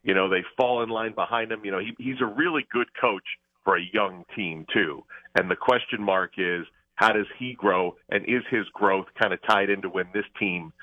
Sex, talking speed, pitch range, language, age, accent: male, 220 wpm, 100-115 Hz, English, 40-59, American